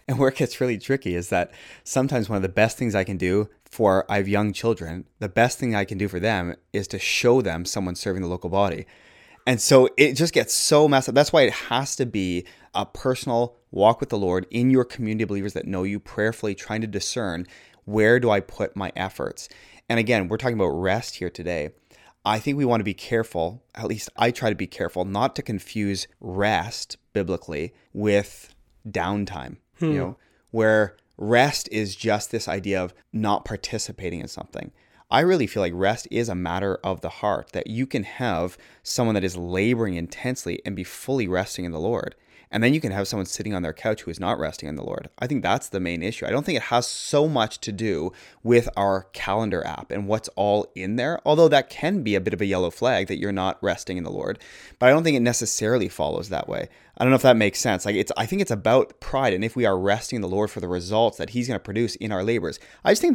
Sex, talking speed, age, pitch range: male, 235 wpm, 20-39, 95-120 Hz